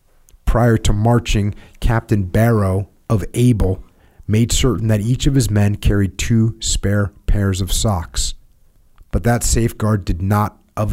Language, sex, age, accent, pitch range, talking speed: English, male, 30-49, American, 95-115 Hz, 145 wpm